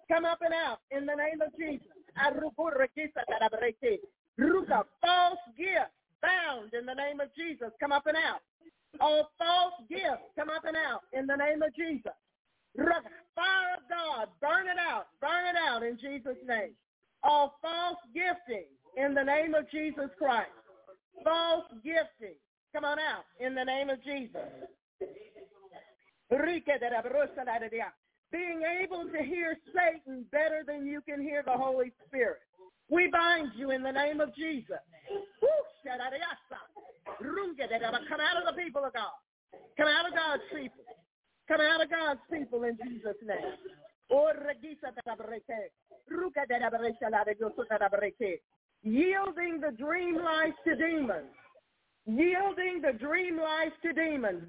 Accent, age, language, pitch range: American, 40-59, English, 265-340 Hz